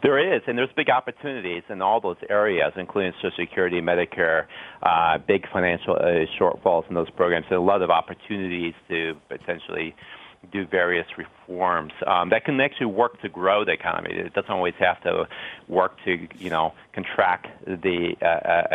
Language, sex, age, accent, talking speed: English, male, 40-59, American, 170 wpm